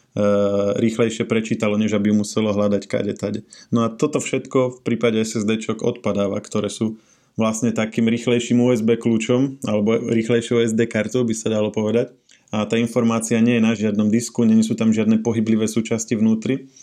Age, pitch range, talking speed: 20-39, 110-120 Hz, 165 wpm